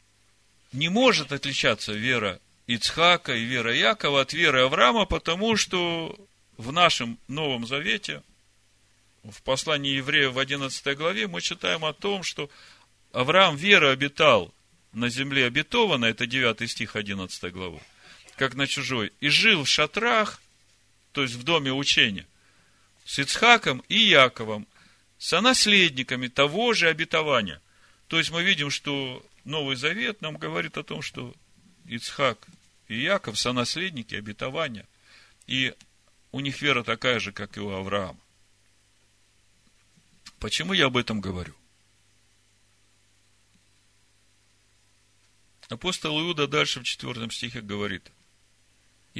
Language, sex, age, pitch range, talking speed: Russian, male, 50-69, 100-155 Hz, 120 wpm